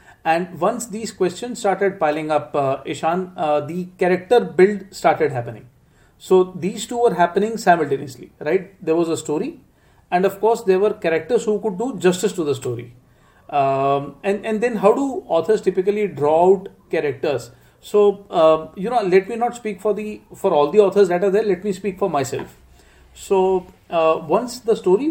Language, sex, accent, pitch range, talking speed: English, male, Indian, 150-205 Hz, 185 wpm